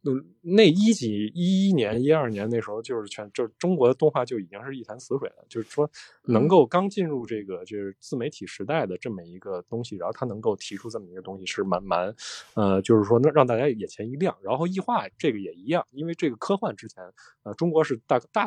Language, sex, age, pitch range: Chinese, male, 20-39, 105-170 Hz